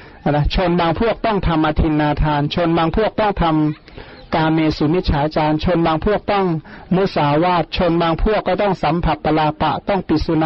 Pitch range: 155-185 Hz